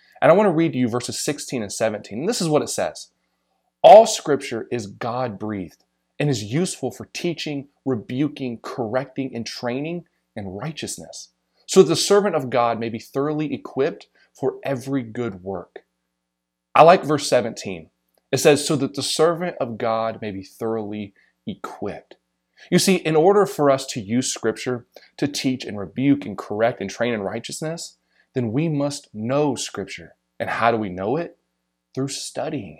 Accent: American